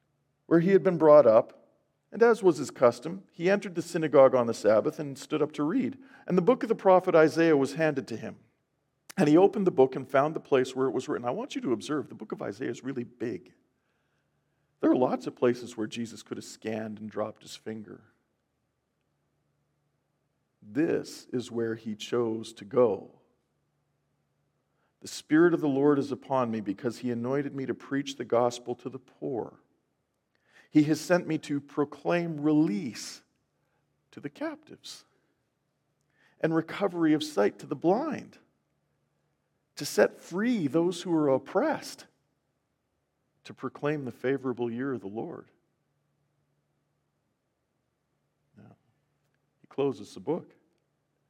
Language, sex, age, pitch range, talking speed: English, male, 50-69, 125-160 Hz, 160 wpm